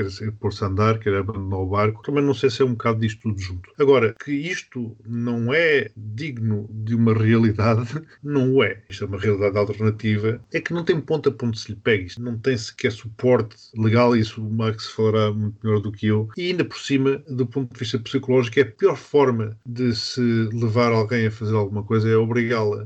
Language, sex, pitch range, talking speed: Portuguese, male, 110-140 Hz, 215 wpm